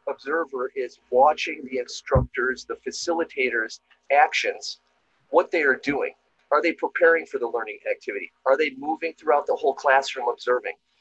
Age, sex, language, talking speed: 40-59, male, English, 145 wpm